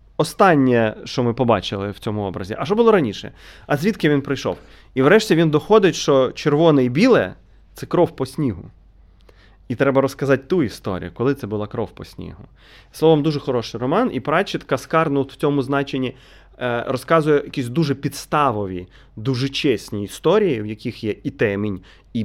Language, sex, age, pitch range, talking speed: Ukrainian, male, 30-49, 100-145 Hz, 165 wpm